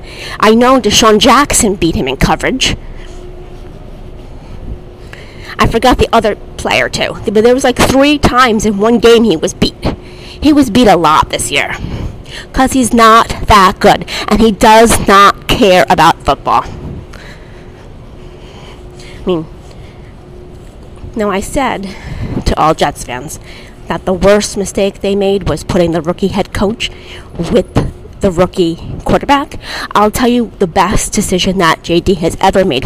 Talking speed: 150 wpm